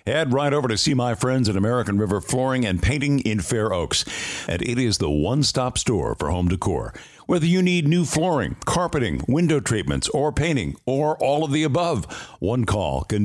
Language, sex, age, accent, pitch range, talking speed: English, male, 60-79, American, 115-155 Hz, 195 wpm